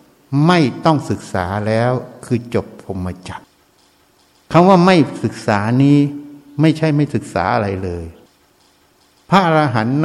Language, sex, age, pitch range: Thai, male, 60-79, 90-135 Hz